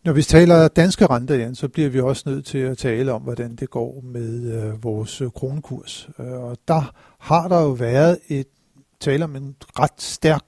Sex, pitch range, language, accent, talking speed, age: male, 120-145 Hz, Danish, native, 200 wpm, 60-79